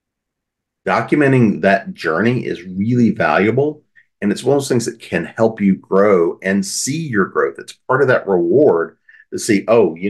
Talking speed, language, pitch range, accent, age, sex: 180 wpm, English, 90-130 Hz, American, 40-59, male